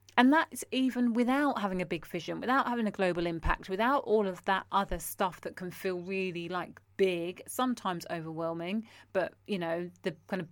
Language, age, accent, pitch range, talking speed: English, 30-49, British, 170-210 Hz, 190 wpm